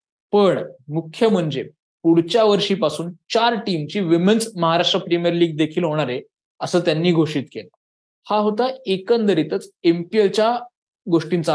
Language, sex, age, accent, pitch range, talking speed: Marathi, male, 20-39, native, 155-195 Hz, 85 wpm